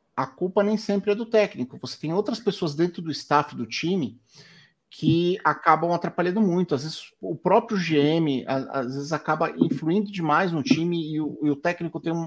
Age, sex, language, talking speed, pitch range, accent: 50-69, male, Portuguese, 180 wpm, 145-205 Hz, Brazilian